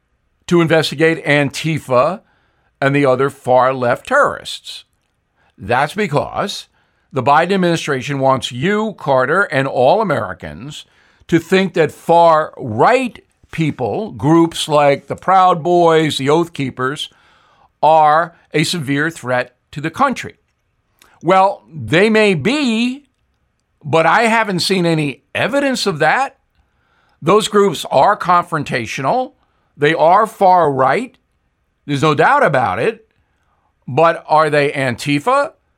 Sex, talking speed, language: male, 115 wpm, English